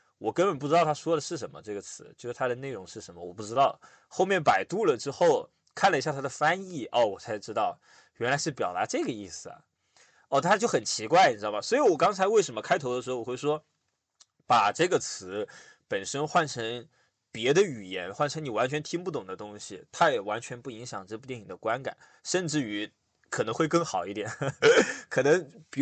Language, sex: Chinese, male